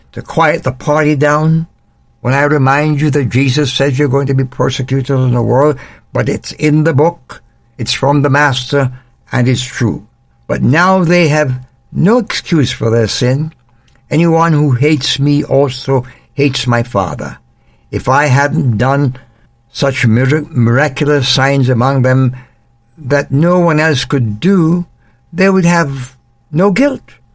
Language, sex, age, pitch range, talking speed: English, male, 60-79, 120-150 Hz, 150 wpm